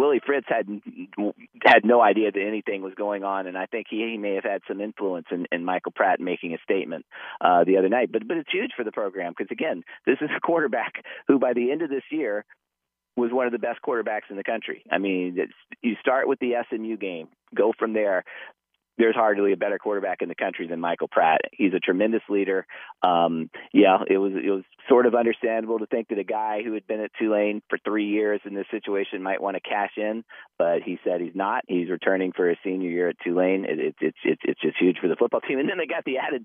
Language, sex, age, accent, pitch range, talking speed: English, male, 40-59, American, 95-120 Hz, 240 wpm